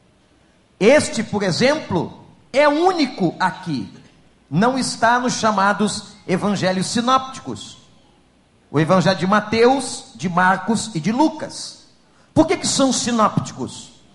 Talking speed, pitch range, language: 110 wpm, 185-245 Hz, Portuguese